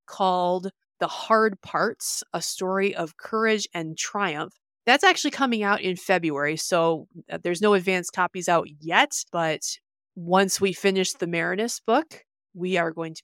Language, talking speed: English, 155 wpm